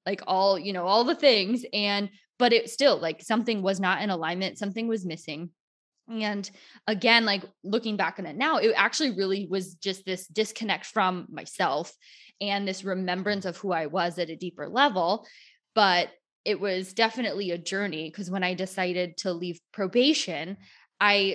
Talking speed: 175 wpm